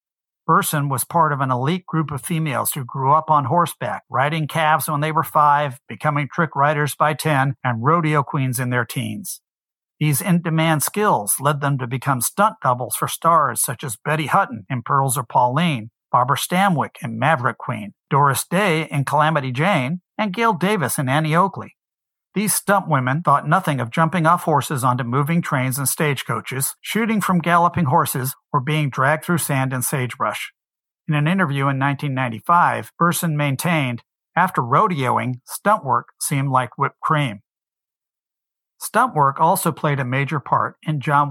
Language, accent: English, American